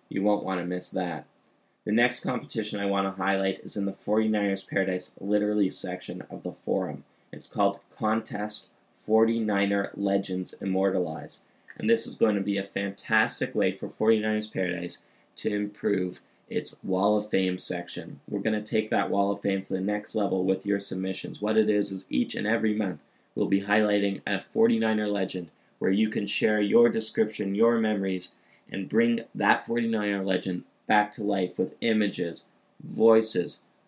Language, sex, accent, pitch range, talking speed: English, male, American, 95-110 Hz, 170 wpm